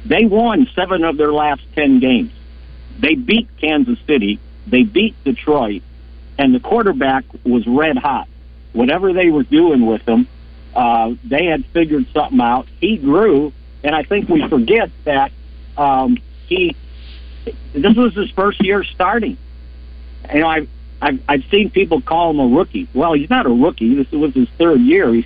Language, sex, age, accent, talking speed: English, male, 60-79, American, 165 wpm